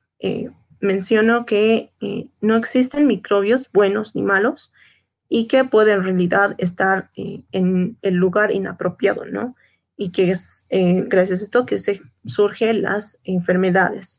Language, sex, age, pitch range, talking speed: Spanish, female, 30-49, 190-225 Hz, 145 wpm